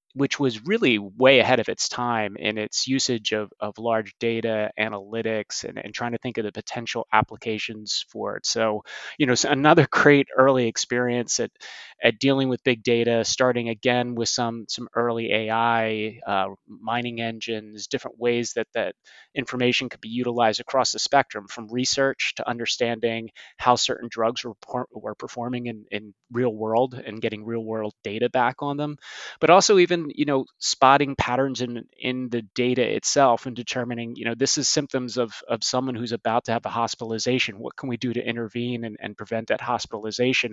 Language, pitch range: English, 115-130 Hz